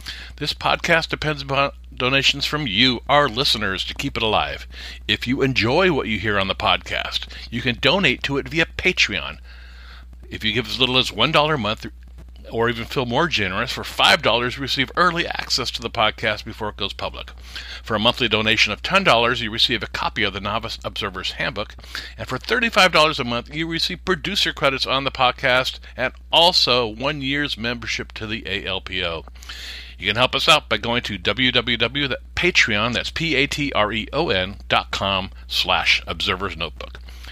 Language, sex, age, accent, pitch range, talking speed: English, male, 50-69, American, 95-140 Hz, 160 wpm